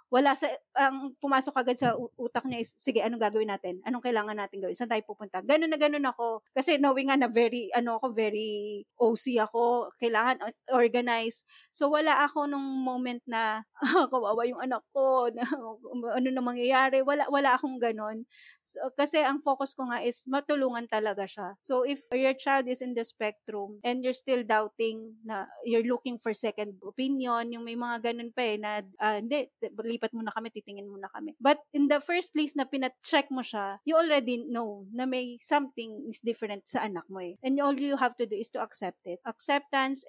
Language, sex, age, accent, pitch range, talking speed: English, female, 20-39, Filipino, 225-270 Hz, 195 wpm